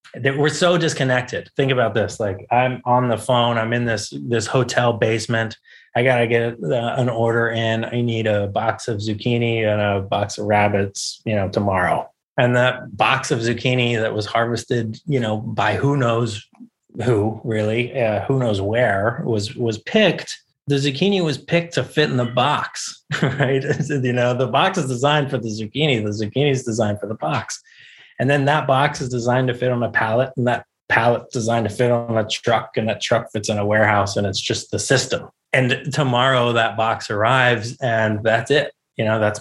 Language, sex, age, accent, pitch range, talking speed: English, male, 30-49, American, 110-130 Hz, 200 wpm